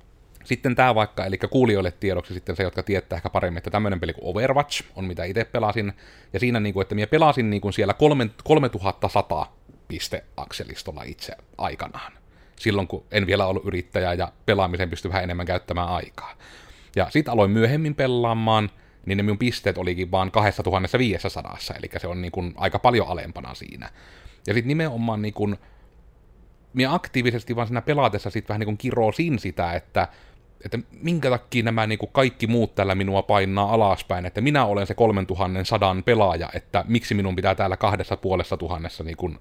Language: Finnish